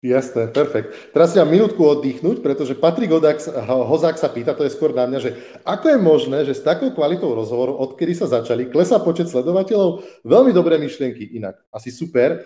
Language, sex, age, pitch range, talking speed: Slovak, male, 30-49, 130-160 Hz, 190 wpm